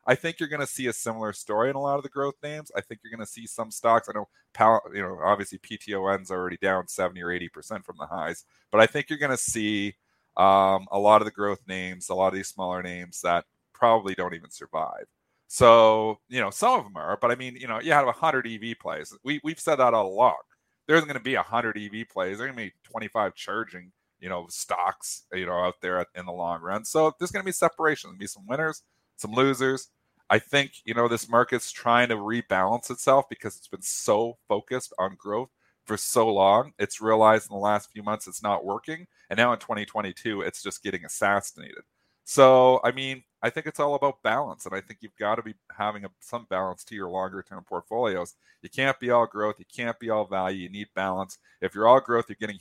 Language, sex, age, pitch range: English, male, 30-49, 95-130 Hz